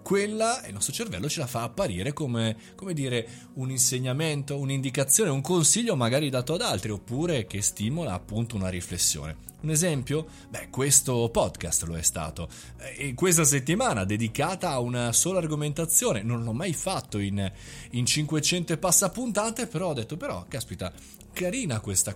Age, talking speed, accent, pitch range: 30-49, 155 wpm, native, 110-160 Hz